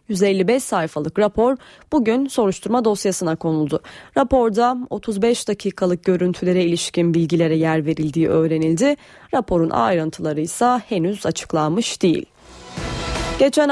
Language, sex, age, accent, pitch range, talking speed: Turkish, female, 30-49, native, 170-235 Hz, 100 wpm